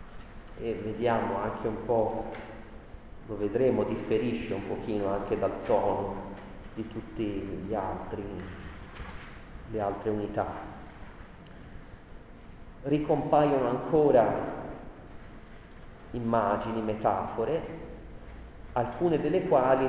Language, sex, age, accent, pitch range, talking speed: Italian, male, 40-59, native, 105-130 Hz, 80 wpm